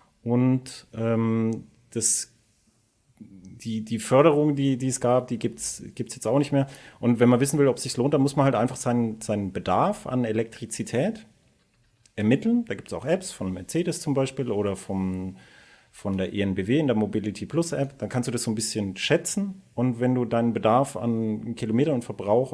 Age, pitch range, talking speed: 40-59, 110-140 Hz, 190 wpm